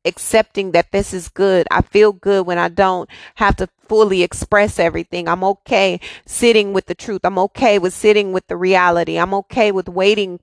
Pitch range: 180-210 Hz